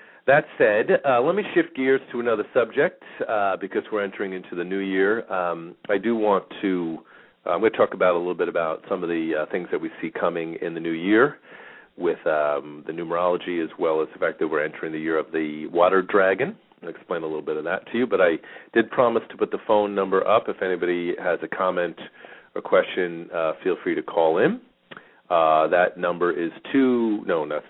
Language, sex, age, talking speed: English, male, 40-59, 225 wpm